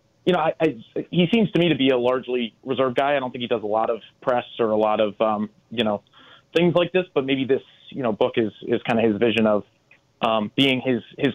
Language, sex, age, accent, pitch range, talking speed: English, male, 30-49, American, 115-140 Hz, 265 wpm